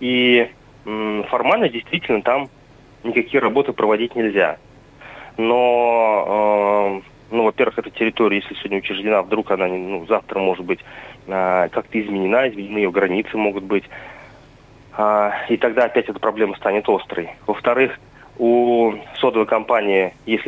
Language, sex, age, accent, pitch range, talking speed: Russian, male, 30-49, native, 100-120 Hz, 130 wpm